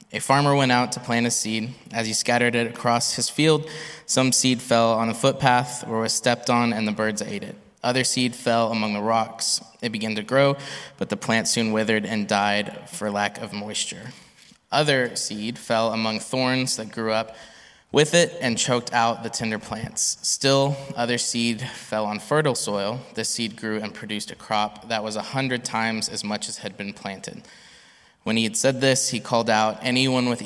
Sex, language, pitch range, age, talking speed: male, English, 110-125 Hz, 20-39, 200 wpm